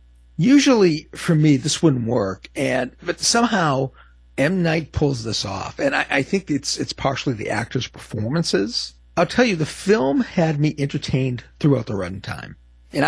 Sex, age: male, 50-69